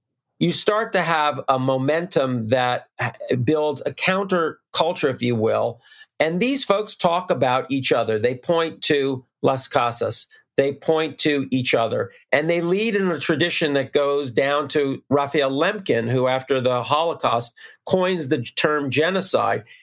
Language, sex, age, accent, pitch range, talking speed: English, male, 50-69, American, 135-175 Hz, 150 wpm